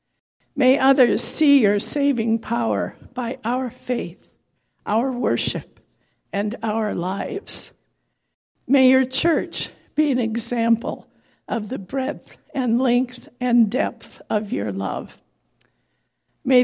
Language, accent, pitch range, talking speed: English, American, 210-255 Hz, 110 wpm